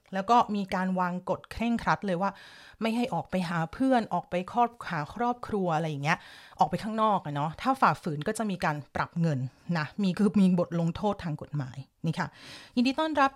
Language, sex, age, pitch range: Thai, female, 30-49, 165-220 Hz